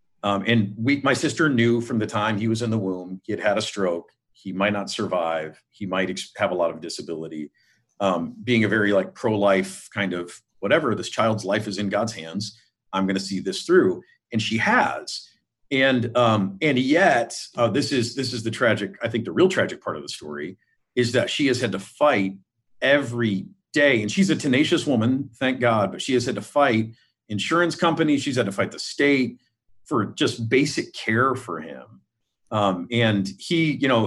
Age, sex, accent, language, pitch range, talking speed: 40-59, male, American, English, 100-135 Hz, 205 wpm